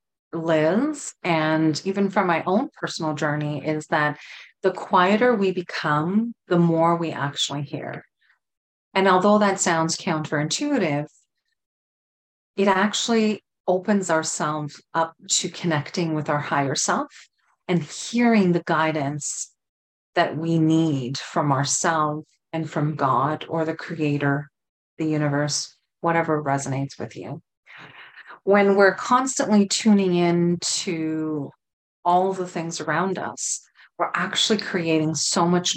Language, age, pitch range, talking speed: English, 30-49, 155-185 Hz, 120 wpm